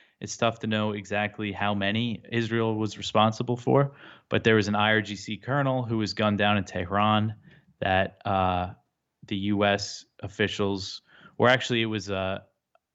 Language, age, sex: English, 20-39, male